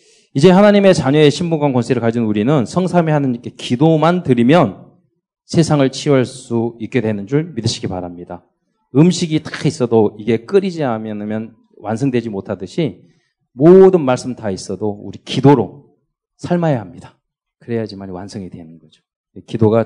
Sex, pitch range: male, 115-170 Hz